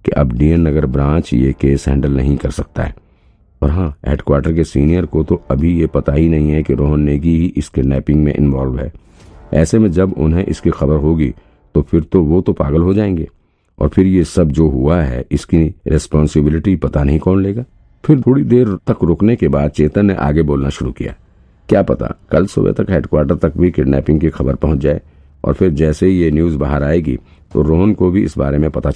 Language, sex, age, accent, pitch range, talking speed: Hindi, male, 50-69, native, 70-90 Hz, 215 wpm